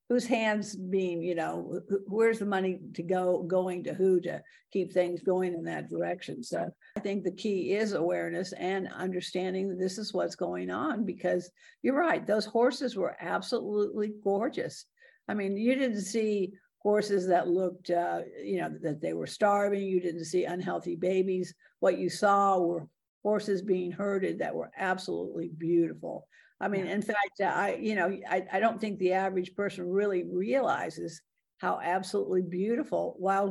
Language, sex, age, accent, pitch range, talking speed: English, female, 60-79, American, 180-210 Hz, 170 wpm